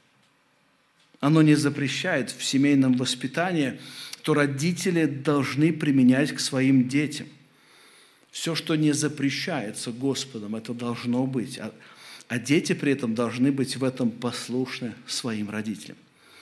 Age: 40-59